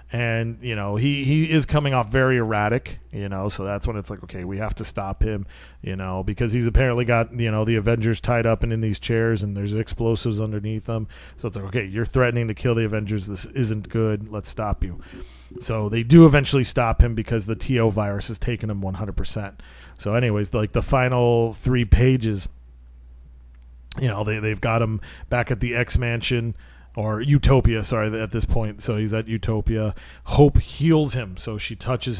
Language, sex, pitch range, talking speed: English, male, 105-125 Hz, 200 wpm